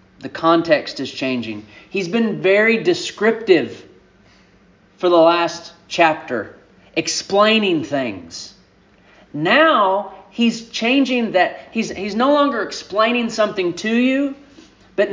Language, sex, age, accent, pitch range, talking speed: English, male, 30-49, American, 145-220 Hz, 105 wpm